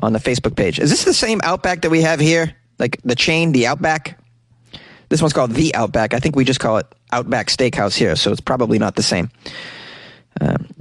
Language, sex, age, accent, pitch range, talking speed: English, male, 30-49, American, 120-170 Hz, 215 wpm